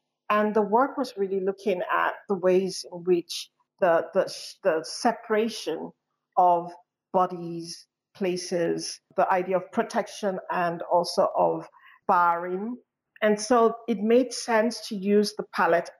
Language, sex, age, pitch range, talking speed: English, female, 50-69, 175-205 Hz, 130 wpm